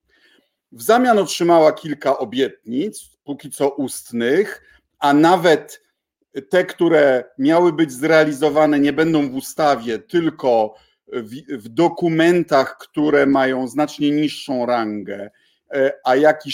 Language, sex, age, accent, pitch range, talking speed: Polish, male, 50-69, native, 135-195 Hz, 110 wpm